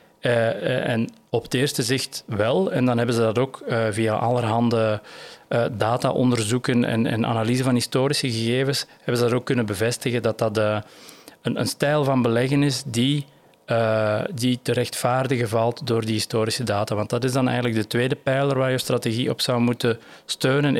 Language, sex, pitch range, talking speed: Dutch, male, 115-130 Hz, 175 wpm